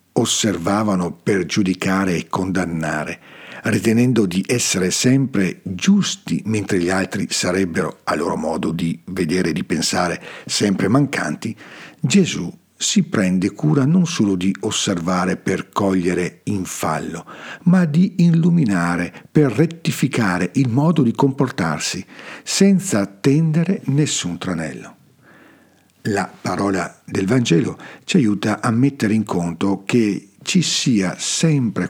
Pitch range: 95-140 Hz